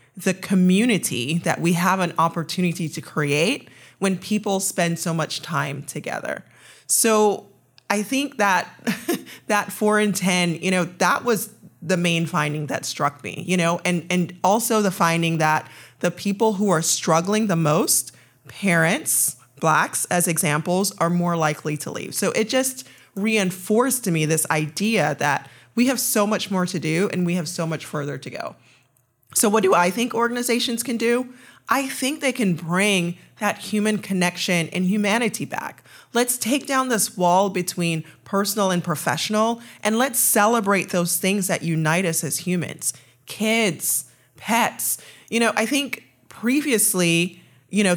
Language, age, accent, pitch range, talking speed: English, 20-39, American, 160-210 Hz, 160 wpm